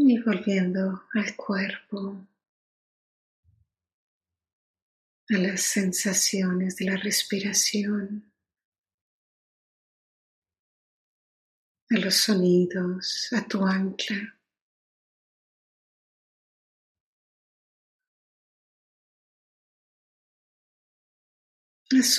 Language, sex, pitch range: English, female, 195-220 Hz